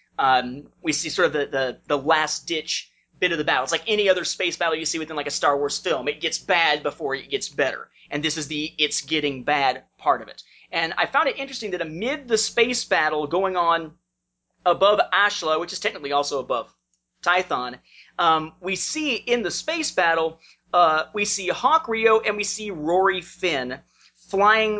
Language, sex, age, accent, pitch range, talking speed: English, male, 30-49, American, 155-225 Hz, 190 wpm